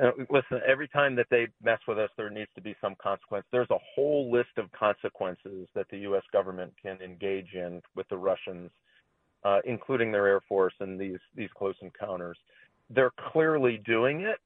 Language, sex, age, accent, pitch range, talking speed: English, male, 40-59, American, 100-120 Hz, 185 wpm